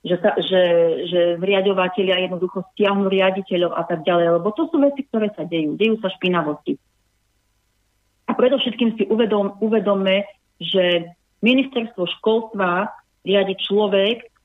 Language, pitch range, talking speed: Slovak, 175-220 Hz, 130 wpm